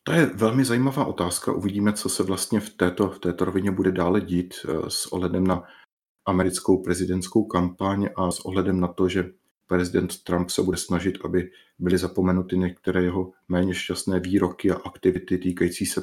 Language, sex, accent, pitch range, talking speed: Czech, male, native, 90-100 Hz, 170 wpm